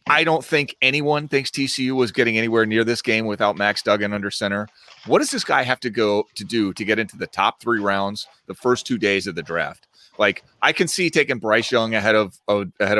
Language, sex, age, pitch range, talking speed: English, male, 30-49, 100-130 Hz, 235 wpm